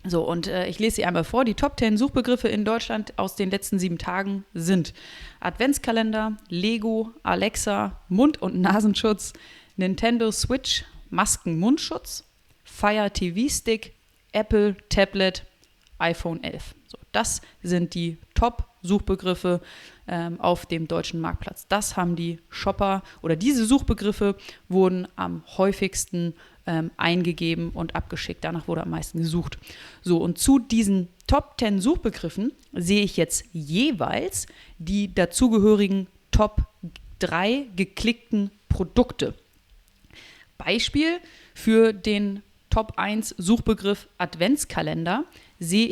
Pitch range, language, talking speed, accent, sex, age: 175-225 Hz, German, 115 wpm, German, female, 30-49